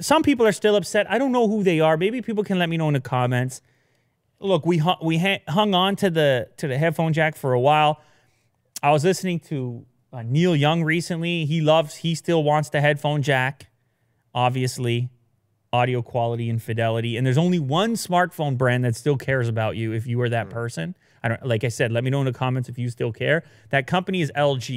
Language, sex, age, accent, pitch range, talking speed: English, male, 30-49, American, 120-160 Hz, 225 wpm